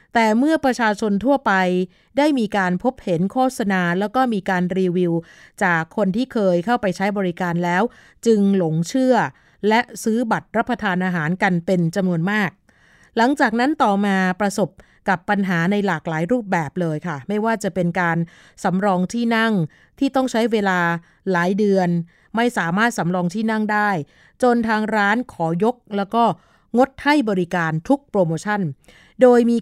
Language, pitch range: Thai, 180-225 Hz